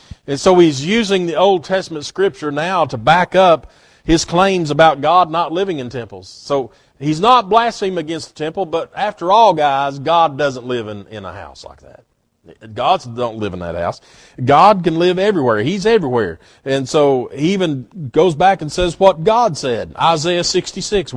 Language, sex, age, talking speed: English, male, 40-59, 185 wpm